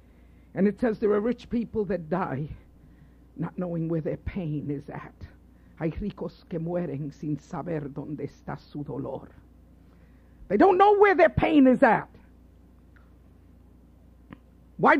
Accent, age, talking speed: American, 50-69, 140 wpm